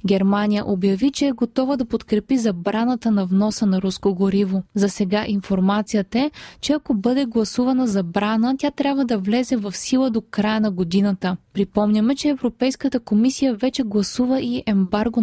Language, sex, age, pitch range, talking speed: Bulgarian, female, 20-39, 195-245 Hz, 160 wpm